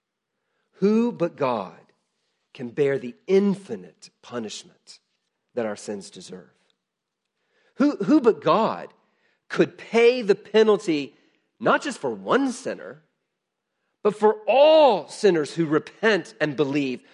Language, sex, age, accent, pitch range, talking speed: English, male, 40-59, American, 145-220 Hz, 115 wpm